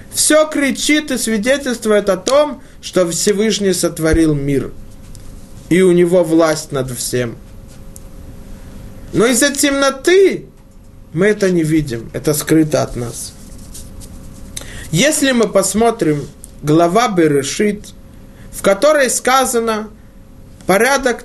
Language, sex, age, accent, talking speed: Russian, male, 20-39, native, 100 wpm